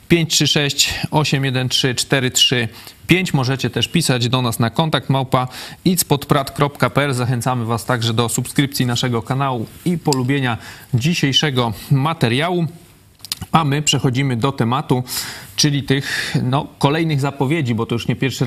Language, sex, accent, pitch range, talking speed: Polish, male, native, 125-140 Hz, 105 wpm